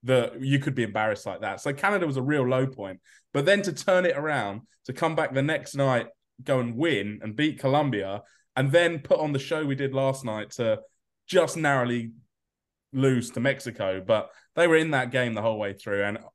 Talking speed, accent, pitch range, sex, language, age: 215 wpm, British, 110-145 Hz, male, English, 20-39